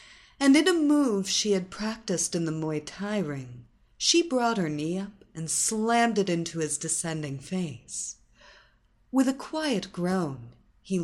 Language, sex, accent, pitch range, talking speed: English, female, American, 160-235 Hz, 160 wpm